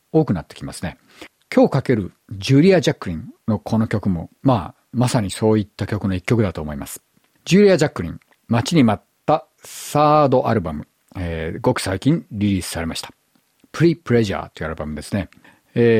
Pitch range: 95-150 Hz